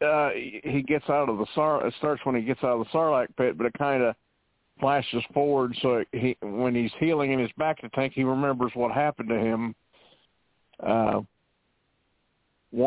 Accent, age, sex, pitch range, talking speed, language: American, 50-69, male, 110-130 Hz, 180 wpm, English